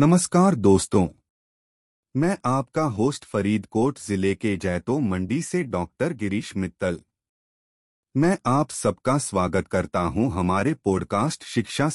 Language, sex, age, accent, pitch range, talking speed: Hindi, male, 30-49, native, 90-145 Hz, 120 wpm